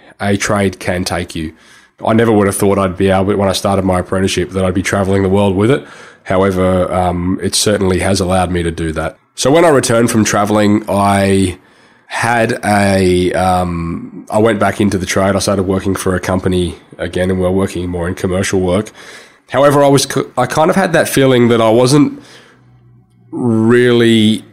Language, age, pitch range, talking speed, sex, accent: English, 20-39, 95-115 Hz, 195 wpm, male, Australian